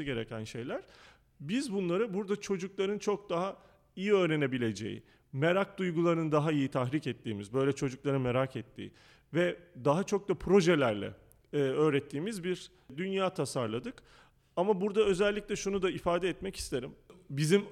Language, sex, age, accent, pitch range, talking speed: Turkish, male, 40-59, native, 135-190 Hz, 130 wpm